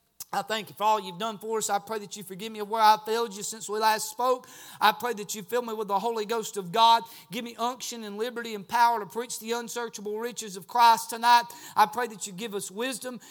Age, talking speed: 40-59, 260 wpm